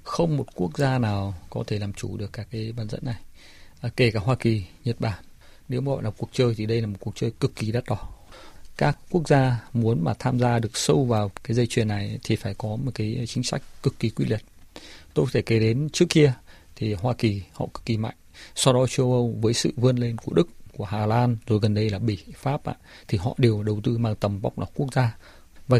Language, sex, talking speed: Vietnamese, male, 250 wpm